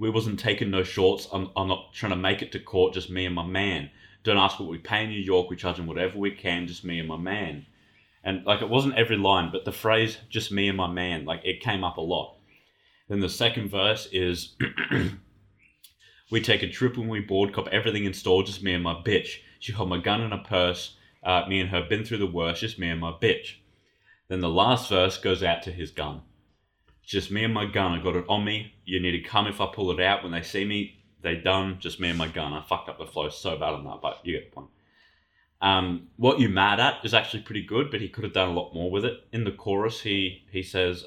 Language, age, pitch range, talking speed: English, 20-39, 90-105 Hz, 260 wpm